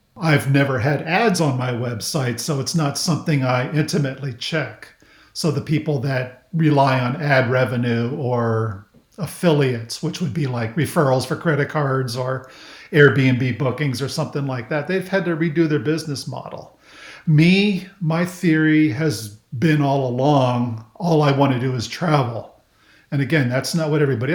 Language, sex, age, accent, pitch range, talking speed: English, male, 50-69, American, 135-165 Hz, 165 wpm